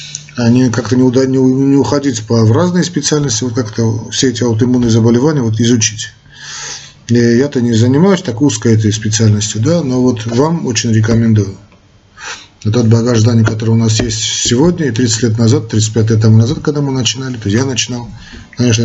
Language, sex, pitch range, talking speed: Russian, male, 110-130 Hz, 180 wpm